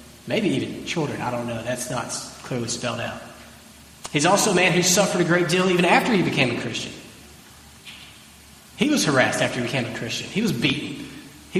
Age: 30-49